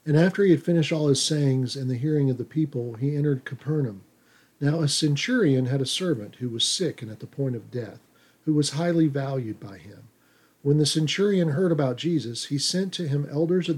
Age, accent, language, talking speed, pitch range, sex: 50-69, American, English, 220 wpm, 130-155 Hz, male